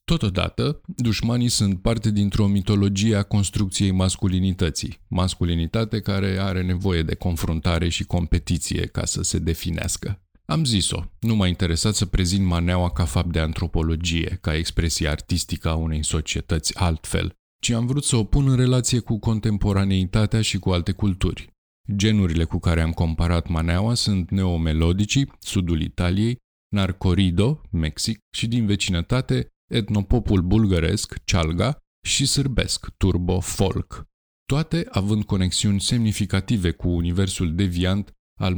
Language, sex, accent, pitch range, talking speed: Romanian, male, native, 85-105 Hz, 130 wpm